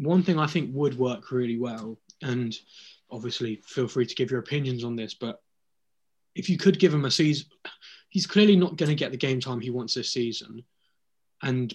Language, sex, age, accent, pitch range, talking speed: English, male, 20-39, British, 120-145 Hz, 205 wpm